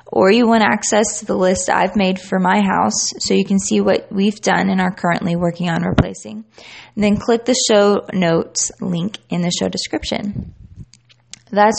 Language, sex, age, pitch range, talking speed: English, female, 20-39, 170-210 Hz, 185 wpm